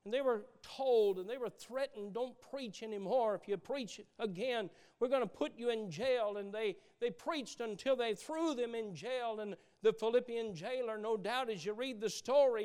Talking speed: 205 wpm